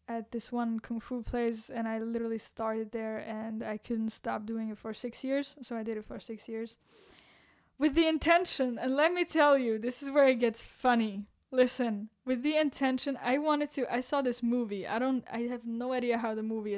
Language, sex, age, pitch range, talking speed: English, female, 10-29, 225-275 Hz, 220 wpm